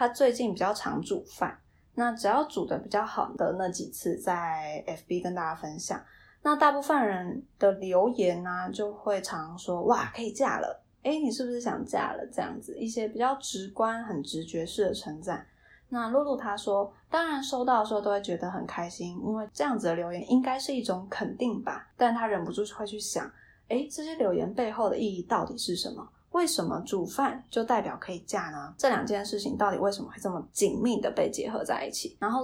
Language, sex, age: Chinese, female, 20-39